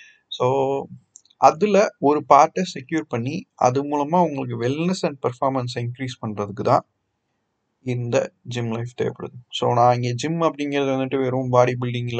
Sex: male